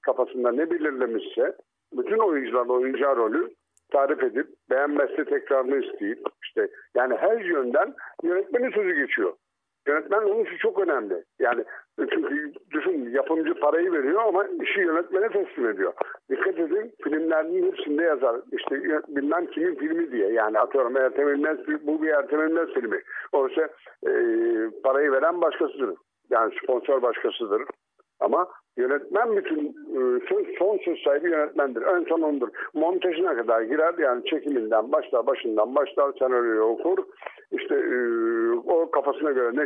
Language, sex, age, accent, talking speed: Turkish, male, 60-79, native, 130 wpm